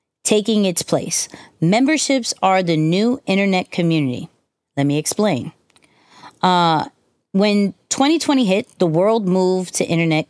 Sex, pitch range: female, 160-205 Hz